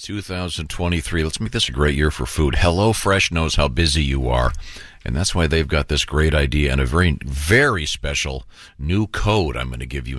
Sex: male